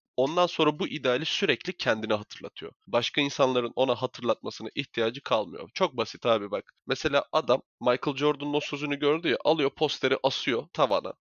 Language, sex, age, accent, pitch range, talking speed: Turkish, male, 20-39, native, 115-145 Hz, 155 wpm